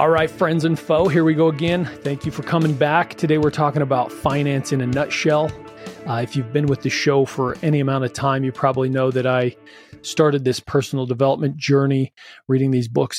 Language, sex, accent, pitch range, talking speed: English, male, American, 125-150 Hz, 215 wpm